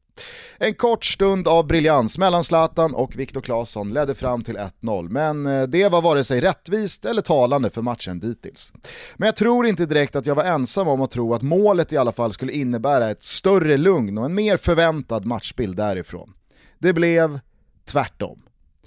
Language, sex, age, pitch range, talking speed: Swedish, male, 30-49, 135-195 Hz, 180 wpm